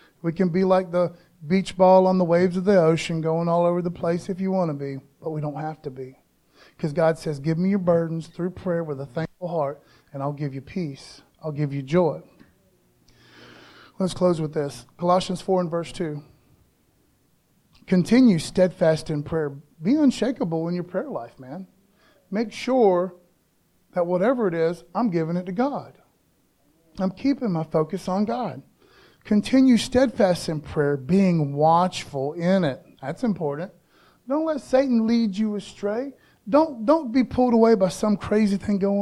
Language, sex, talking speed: English, male, 175 wpm